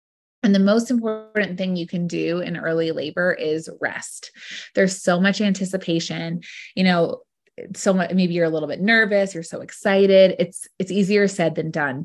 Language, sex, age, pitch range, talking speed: English, female, 20-39, 160-195 Hz, 175 wpm